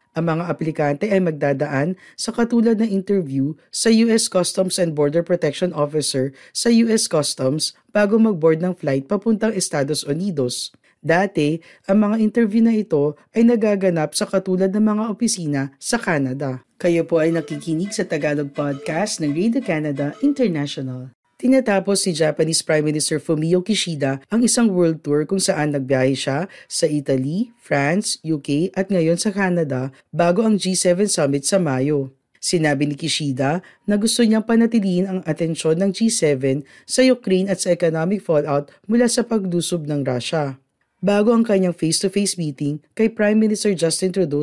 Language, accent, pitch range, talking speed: Filipino, native, 150-205 Hz, 155 wpm